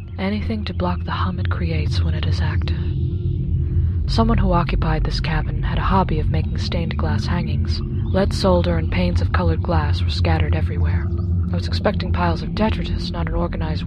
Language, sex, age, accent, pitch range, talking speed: English, female, 20-39, American, 85-90 Hz, 185 wpm